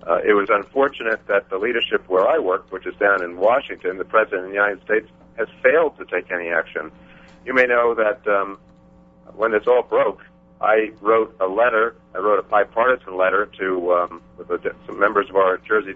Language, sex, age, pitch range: English, male, 50-69, 90-125 Hz